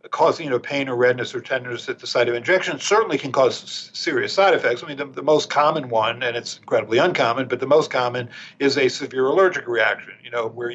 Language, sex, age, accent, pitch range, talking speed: English, male, 50-69, American, 120-145 Hz, 225 wpm